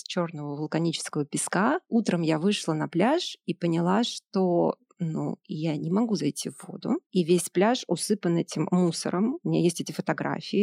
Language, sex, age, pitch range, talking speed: Russian, female, 30-49, 170-210 Hz, 165 wpm